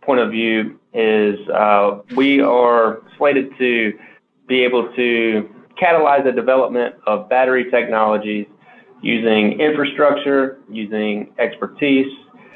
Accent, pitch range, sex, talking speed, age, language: American, 110-130 Hz, male, 105 wpm, 20-39, English